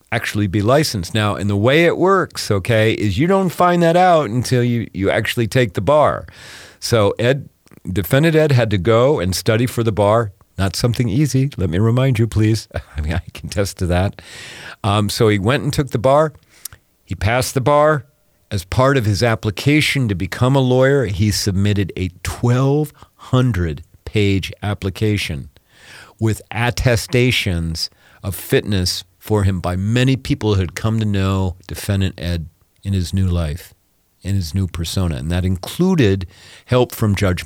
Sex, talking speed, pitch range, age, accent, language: male, 170 wpm, 95-125 Hz, 40-59, American, English